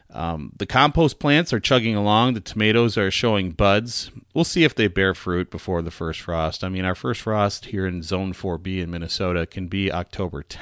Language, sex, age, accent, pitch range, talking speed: English, male, 30-49, American, 90-110 Hz, 210 wpm